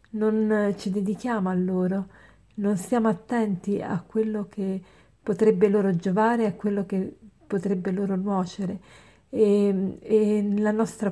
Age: 40-59